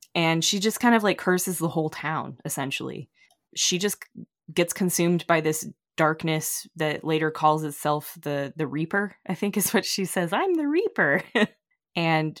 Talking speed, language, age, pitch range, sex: 175 wpm, English, 20-39, 150-180 Hz, female